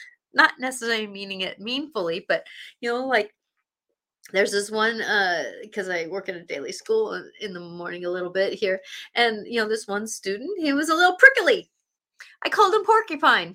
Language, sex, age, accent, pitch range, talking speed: English, female, 30-49, American, 200-315 Hz, 185 wpm